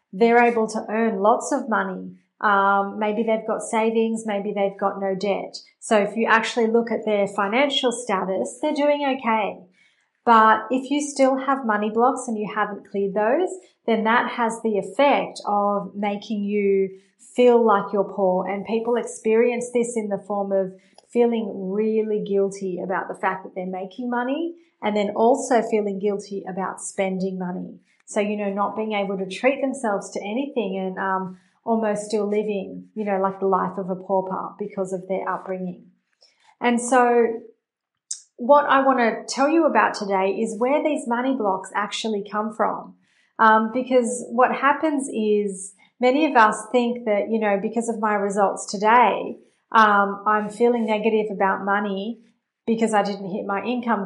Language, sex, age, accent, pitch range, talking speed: English, female, 30-49, Australian, 200-235 Hz, 170 wpm